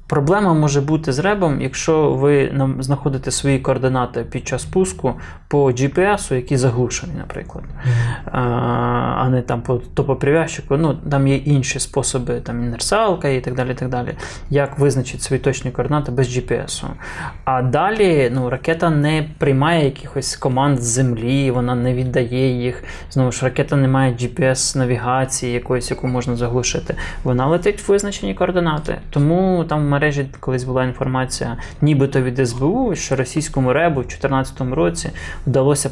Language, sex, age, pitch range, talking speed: Ukrainian, male, 20-39, 125-145 Hz, 145 wpm